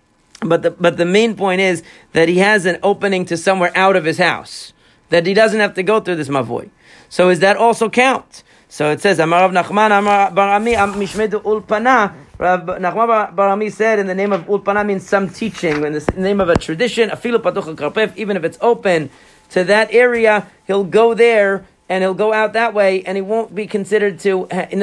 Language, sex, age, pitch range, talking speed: English, male, 40-59, 175-215 Hz, 190 wpm